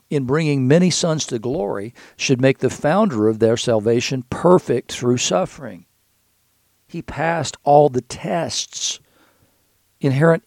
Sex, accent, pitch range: male, American, 115-150 Hz